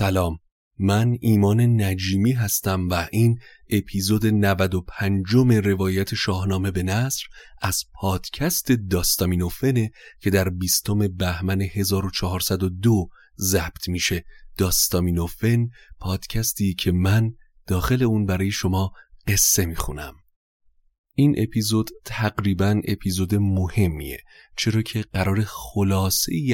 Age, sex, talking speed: 30-49, male, 95 wpm